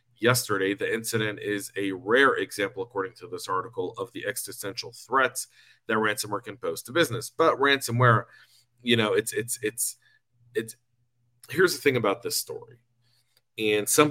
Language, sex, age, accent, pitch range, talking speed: English, male, 40-59, American, 115-135 Hz, 155 wpm